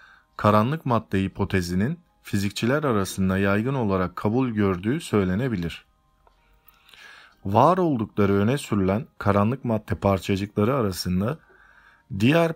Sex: male